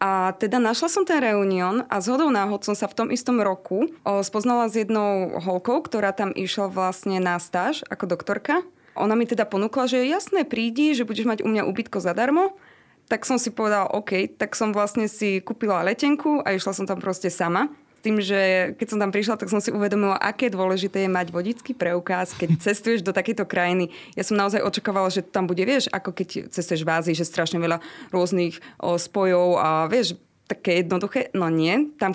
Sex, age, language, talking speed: female, 20-39, Slovak, 195 wpm